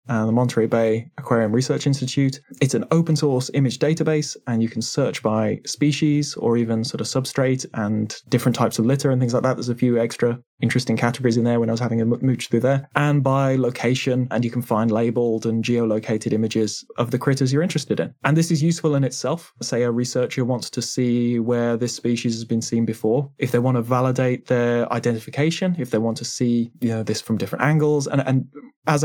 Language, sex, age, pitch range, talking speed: English, male, 20-39, 115-140 Hz, 220 wpm